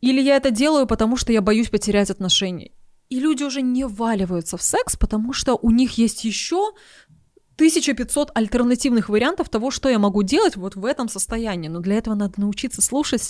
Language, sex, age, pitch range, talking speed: Russian, female, 20-39, 195-245 Hz, 185 wpm